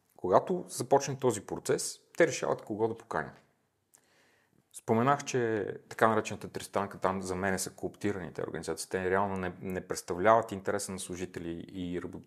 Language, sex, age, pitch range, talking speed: Bulgarian, male, 30-49, 95-130 Hz, 140 wpm